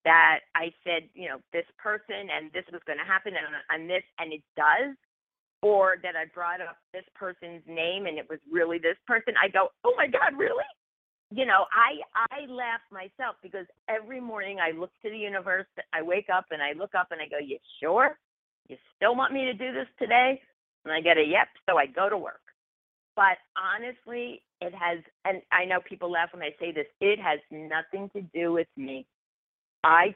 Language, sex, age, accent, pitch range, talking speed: English, female, 40-59, American, 165-210 Hz, 205 wpm